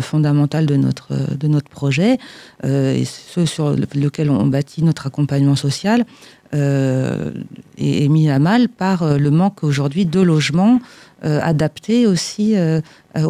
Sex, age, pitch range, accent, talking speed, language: female, 40-59, 150-185 Hz, French, 140 wpm, French